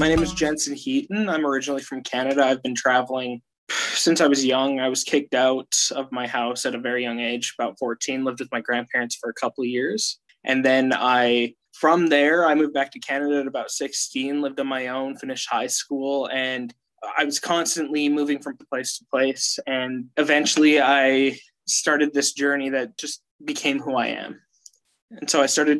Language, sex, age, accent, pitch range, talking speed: English, male, 20-39, American, 130-150 Hz, 195 wpm